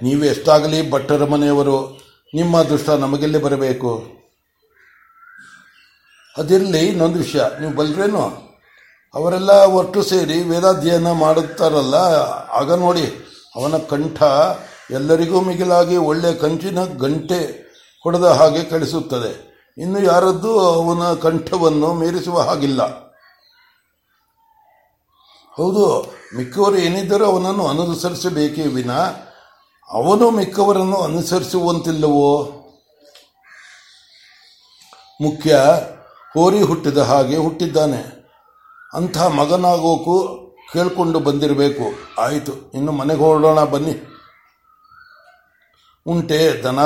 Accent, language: native, Kannada